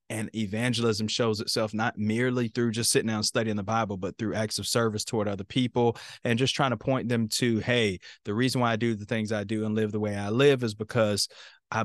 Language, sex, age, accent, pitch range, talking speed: English, male, 30-49, American, 105-120 Hz, 245 wpm